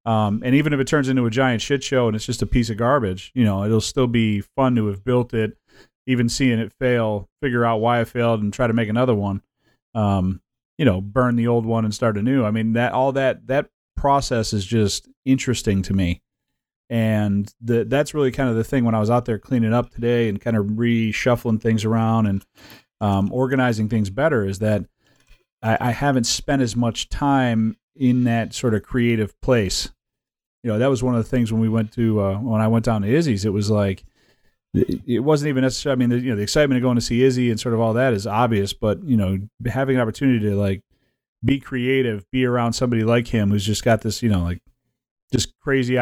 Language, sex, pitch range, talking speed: English, male, 105-125 Hz, 230 wpm